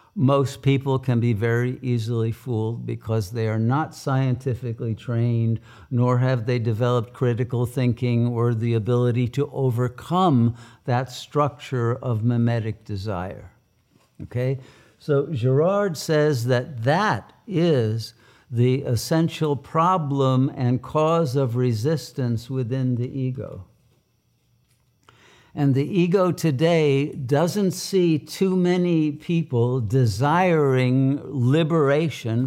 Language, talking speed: English, 105 wpm